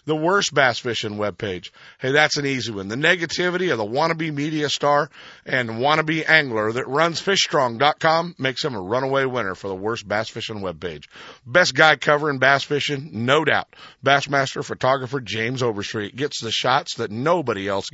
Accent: American